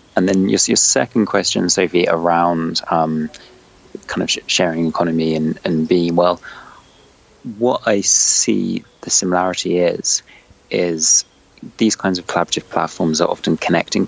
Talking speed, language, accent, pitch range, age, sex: 140 wpm, English, British, 80-90 Hz, 30-49, male